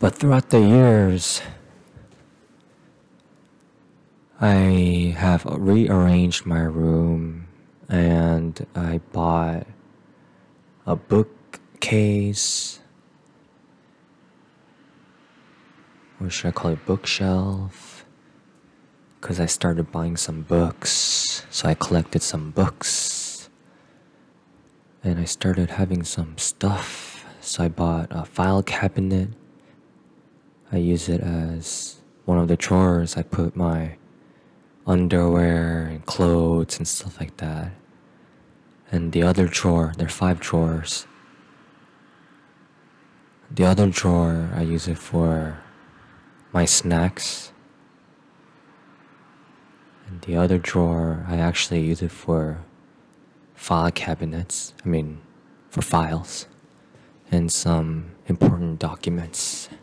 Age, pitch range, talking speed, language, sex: 20-39, 85-95 Hz, 95 wpm, English, male